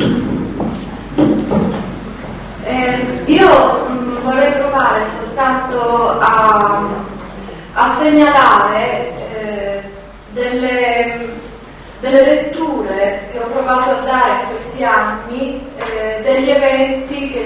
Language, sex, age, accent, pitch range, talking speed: Italian, female, 30-49, native, 220-270 Hz, 85 wpm